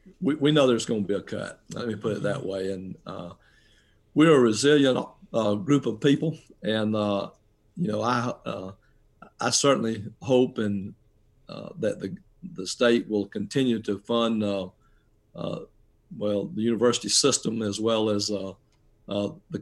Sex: male